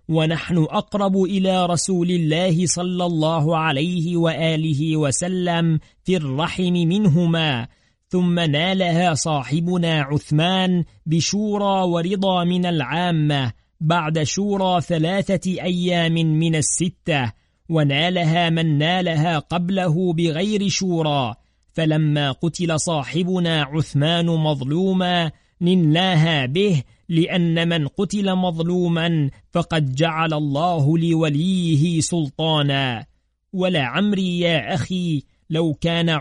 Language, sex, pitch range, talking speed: Arabic, male, 155-180 Hz, 90 wpm